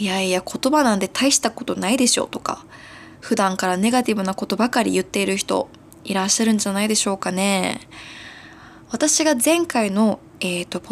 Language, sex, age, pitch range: Japanese, female, 20-39, 195-255 Hz